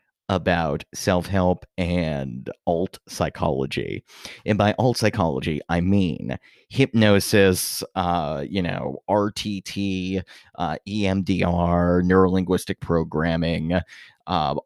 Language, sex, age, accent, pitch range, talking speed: English, male, 30-49, American, 85-110 Hz, 85 wpm